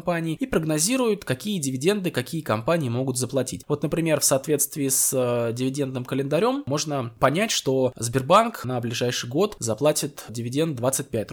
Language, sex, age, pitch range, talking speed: Russian, male, 20-39, 120-155 Hz, 130 wpm